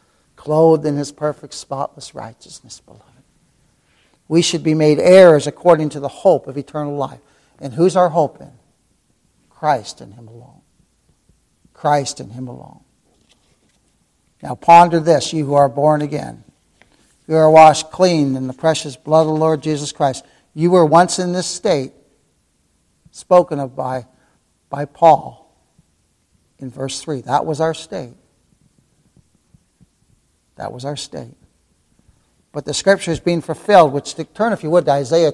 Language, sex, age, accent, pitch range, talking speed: English, male, 60-79, American, 145-185 Hz, 150 wpm